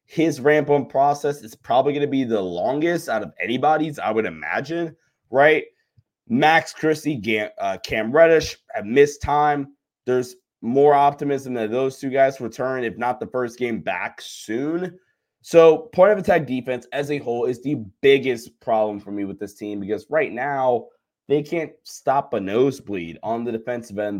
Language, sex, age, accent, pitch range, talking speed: English, male, 20-39, American, 110-145 Hz, 175 wpm